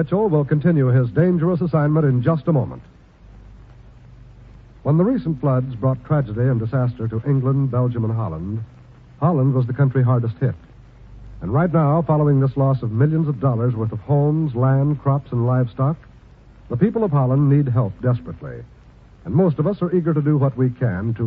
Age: 60-79